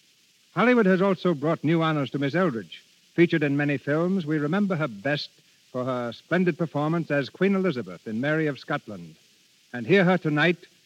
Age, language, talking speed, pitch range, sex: 60-79, English, 175 wpm, 145-185 Hz, male